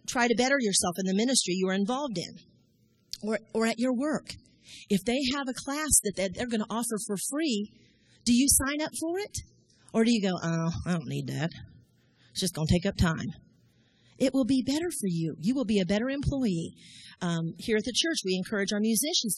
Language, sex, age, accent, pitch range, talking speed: English, female, 40-59, American, 185-250 Hz, 220 wpm